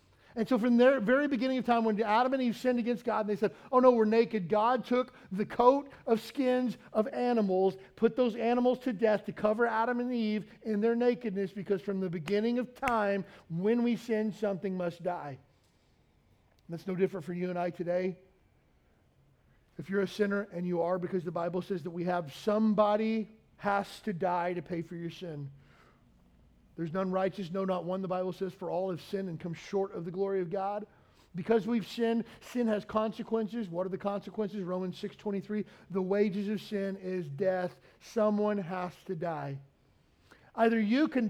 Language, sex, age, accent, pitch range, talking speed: English, male, 40-59, American, 180-220 Hz, 195 wpm